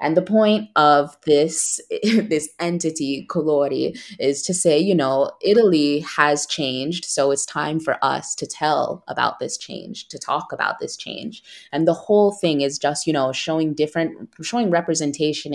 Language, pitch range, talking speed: English, 145-180 Hz, 165 wpm